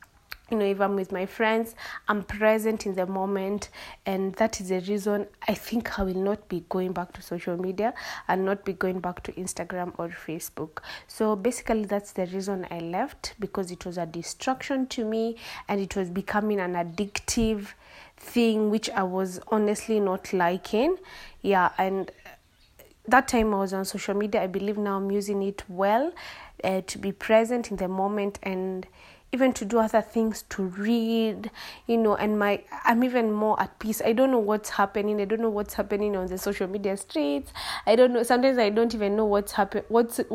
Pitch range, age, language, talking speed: 195-230 Hz, 30-49, English, 190 wpm